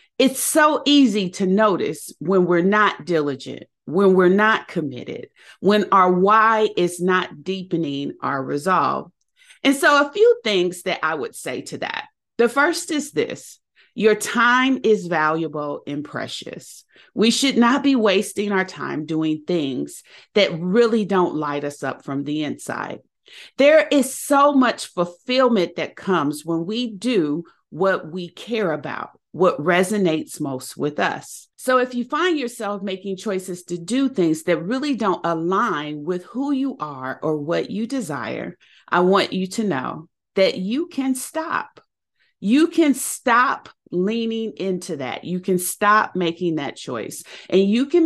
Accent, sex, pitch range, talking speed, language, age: American, female, 170-255 Hz, 155 wpm, English, 40-59